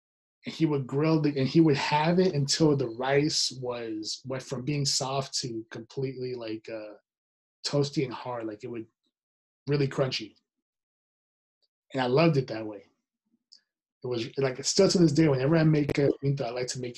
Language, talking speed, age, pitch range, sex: English, 175 wpm, 30-49, 125-165 Hz, male